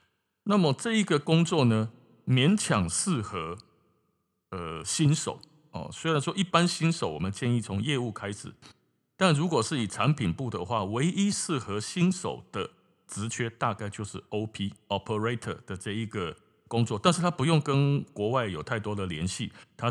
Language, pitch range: Chinese, 105-150 Hz